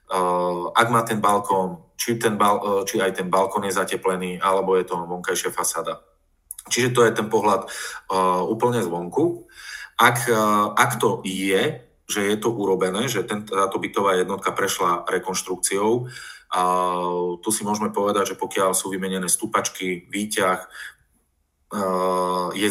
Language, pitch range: Slovak, 90-110 Hz